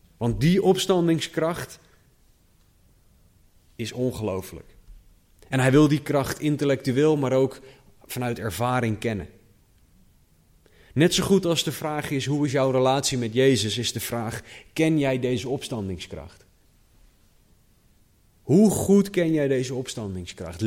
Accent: Dutch